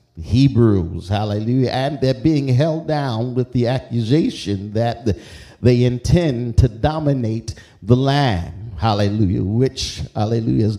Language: English